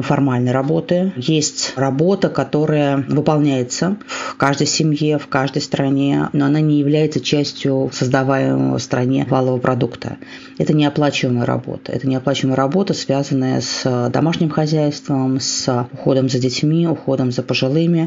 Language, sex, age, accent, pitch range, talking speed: Russian, female, 30-49, native, 125-150 Hz, 130 wpm